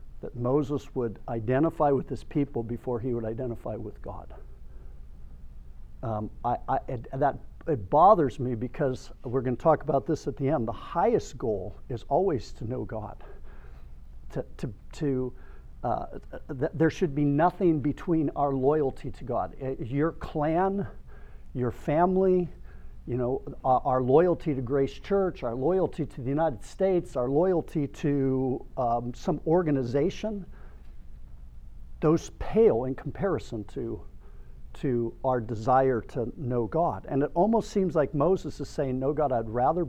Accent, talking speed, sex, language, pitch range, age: American, 145 wpm, male, English, 95-150 Hz, 50-69